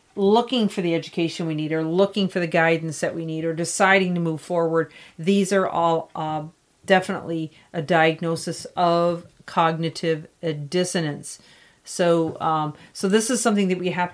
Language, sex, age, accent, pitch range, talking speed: English, female, 40-59, American, 160-190 Hz, 160 wpm